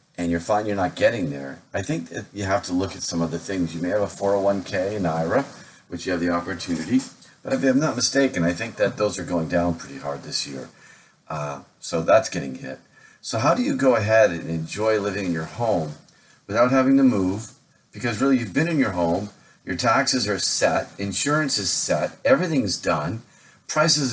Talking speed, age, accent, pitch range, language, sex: 215 wpm, 40-59, American, 90-135 Hz, English, male